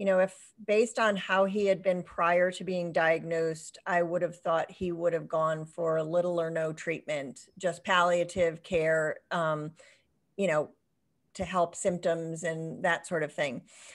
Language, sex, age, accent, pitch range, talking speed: English, female, 40-59, American, 175-245 Hz, 175 wpm